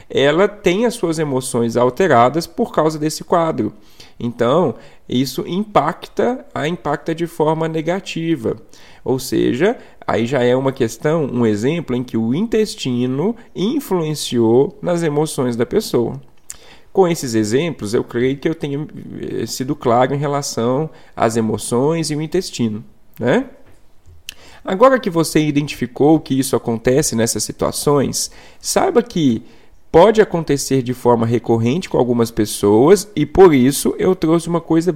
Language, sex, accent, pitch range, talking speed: Portuguese, male, Brazilian, 120-175 Hz, 135 wpm